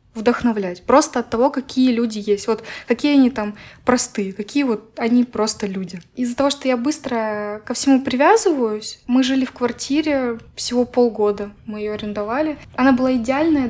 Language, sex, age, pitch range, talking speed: Russian, female, 20-39, 220-265 Hz, 160 wpm